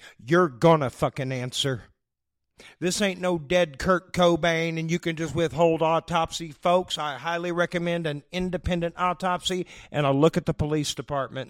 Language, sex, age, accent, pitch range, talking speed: English, male, 50-69, American, 135-175 Hz, 160 wpm